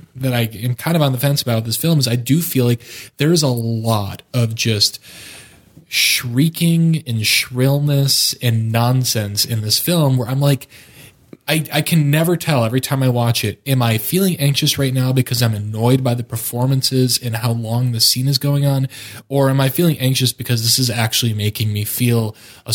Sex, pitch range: male, 110-135 Hz